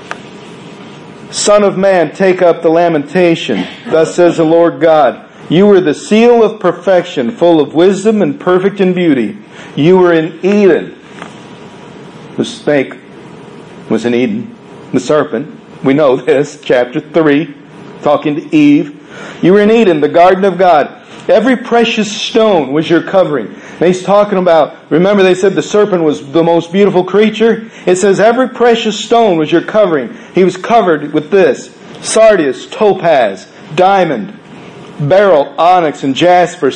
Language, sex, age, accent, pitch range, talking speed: English, male, 50-69, American, 165-210 Hz, 150 wpm